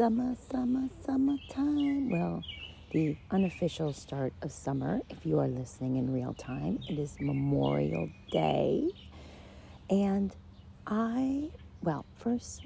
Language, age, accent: English, 40-59, American